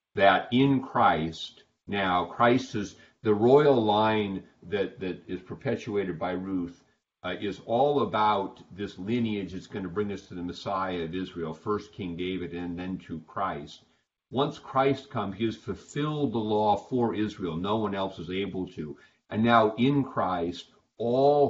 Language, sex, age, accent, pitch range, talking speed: English, male, 50-69, American, 90-110 Hz, 160 wpm